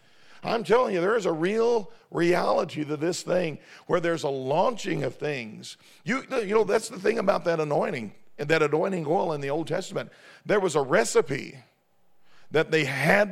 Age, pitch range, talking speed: 50-69, 150-190 Hz, 185 wpm